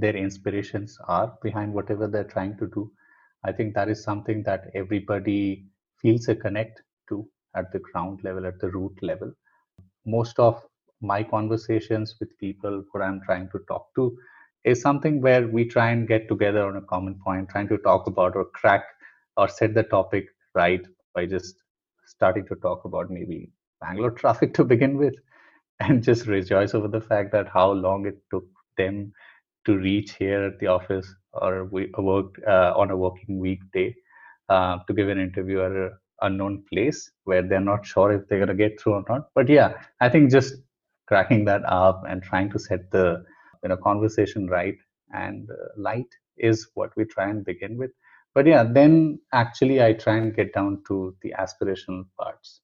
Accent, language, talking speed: Indian, English, 180 wpm